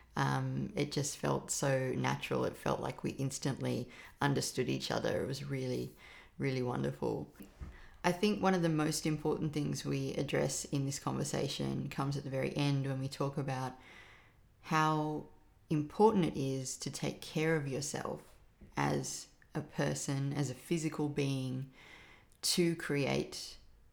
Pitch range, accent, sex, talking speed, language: 125-150 Hz, Australian, female, 150 wpm, English